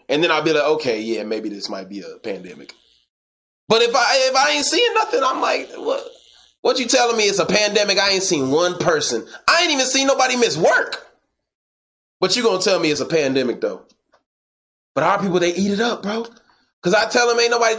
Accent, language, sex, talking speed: American, English, male, 225 wpm